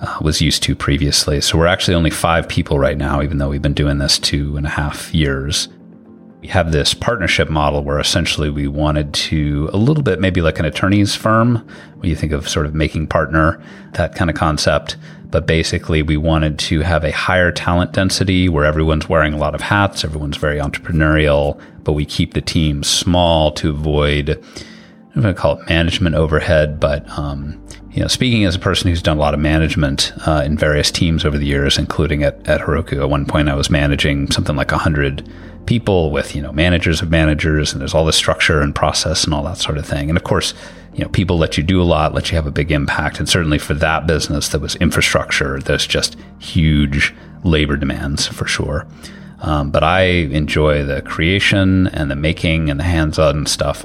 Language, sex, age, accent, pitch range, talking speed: English, male, 30-49, American, 75-85 Hz, 210 wpm